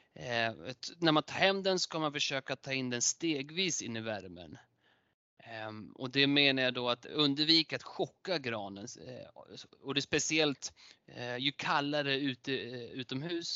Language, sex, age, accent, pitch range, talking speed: Swedish, male, 30-49, native, 120-145 Hz, 170 wpm